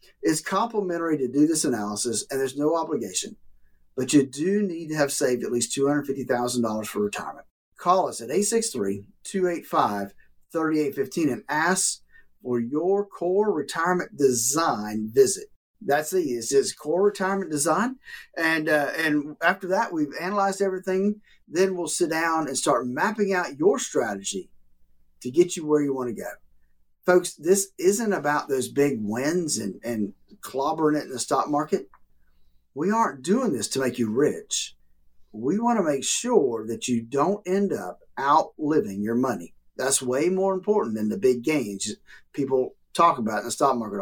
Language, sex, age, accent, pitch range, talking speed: English, male, 50-69, American, 125-195 Hz, 160 wpm